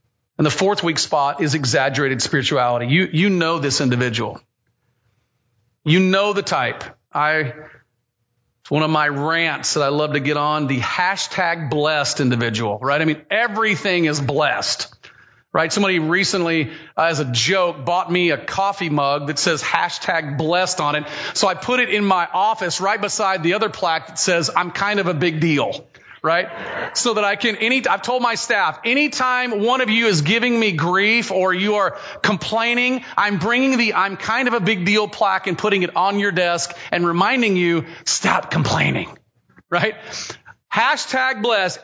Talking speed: 175 wpm